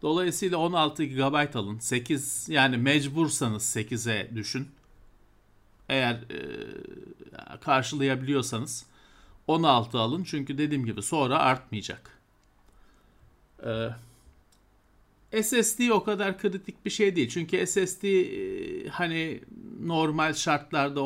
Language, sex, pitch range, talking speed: Turkish, male, 115-160 Hz, 95 wpm